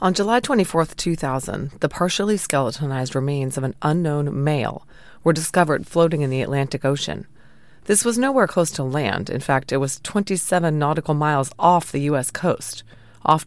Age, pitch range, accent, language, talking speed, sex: 30-49, 135-170 Hz, American, English, 165 wpm, female